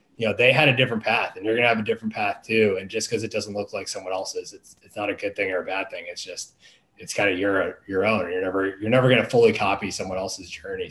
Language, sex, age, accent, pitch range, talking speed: English, male, 20-39, American, 95-125 Hz, 285 wpm